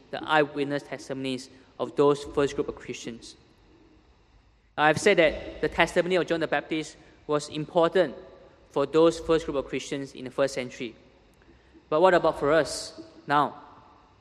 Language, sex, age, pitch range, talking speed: English, male, 20-39, 140-165 Hz, 150 wpm